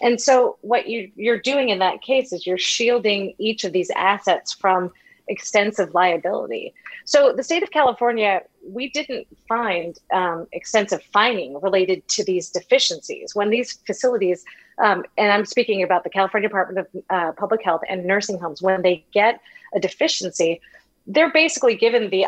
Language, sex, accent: English, female, American